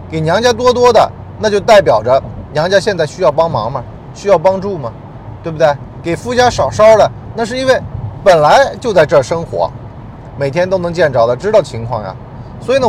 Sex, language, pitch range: male, Chinese, 120-185 Hz